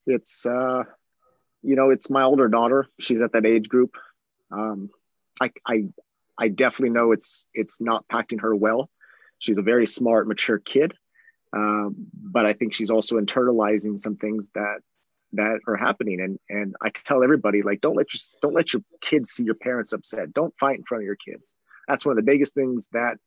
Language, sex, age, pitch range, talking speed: English, male, 30-49, 110-135 Hz, 195 wpm